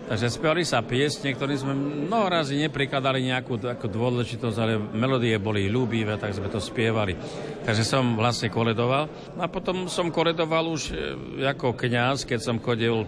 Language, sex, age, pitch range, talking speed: Slovak, male, 50-69, 105-130 Hz, 150 wpm